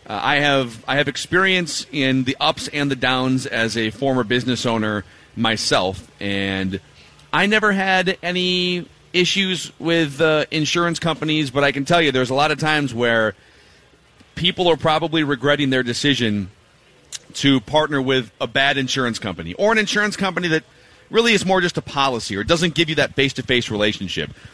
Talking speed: 170 wpm